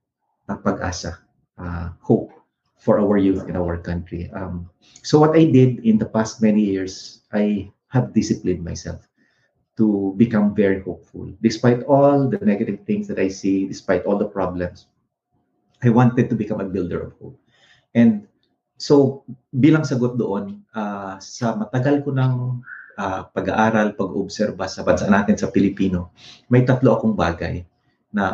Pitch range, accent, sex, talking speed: 95-125 Hz, native, male, 150 wpm